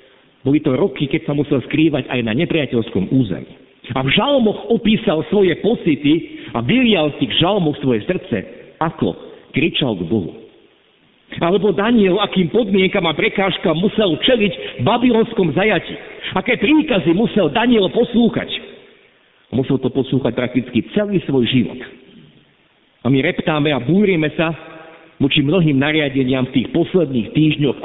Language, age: Slovak, 50-69